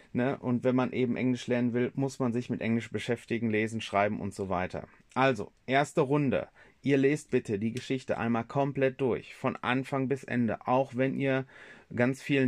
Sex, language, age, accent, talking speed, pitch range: male, German, 30-49, German, 190 wpm, 125-145 Hz